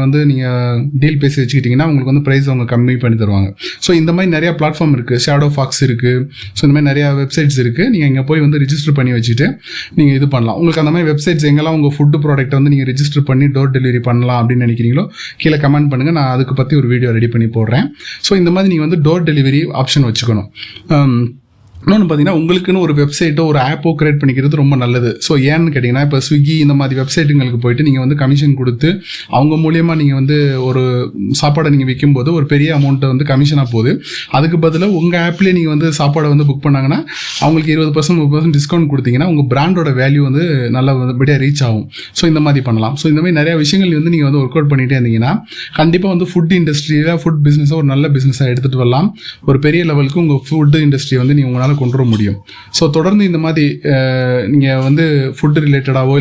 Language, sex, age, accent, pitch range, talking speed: Tamil, male, 20-39, native, 130-155 Hz, 180 wpm